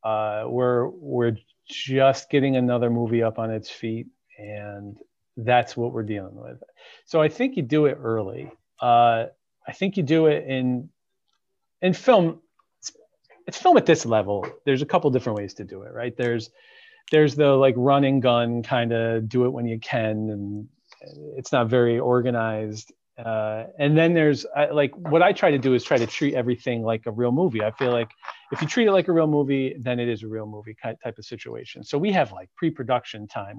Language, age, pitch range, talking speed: English, 40-59, 110-145 Hz, 200 wpm